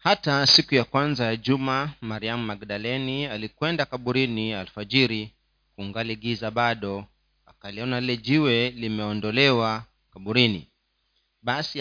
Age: 40-59